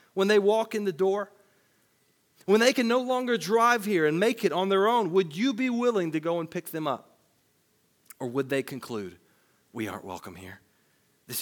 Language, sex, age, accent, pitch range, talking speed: English, male, 40-59, American, 115-175 Hz, 200 wpm